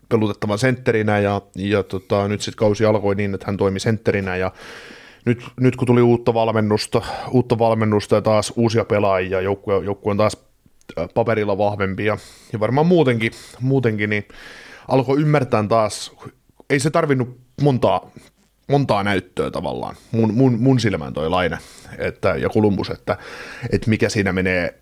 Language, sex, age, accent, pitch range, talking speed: Finnish, male, 30-49, native, 100-120 Hz, 145 wpm